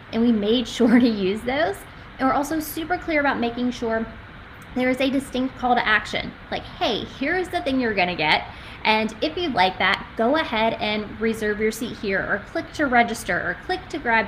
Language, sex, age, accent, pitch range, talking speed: English, female, 20-39, American, 215-290 Hz, 210 wpm